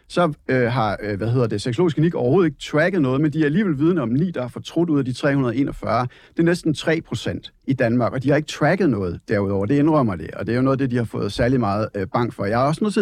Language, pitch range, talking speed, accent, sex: Danish, 130-170 Hz, 295 wpm, native, male